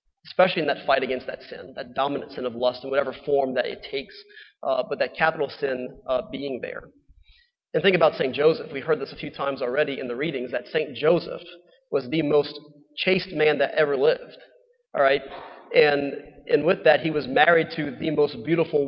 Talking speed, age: 205 wpm, 30-49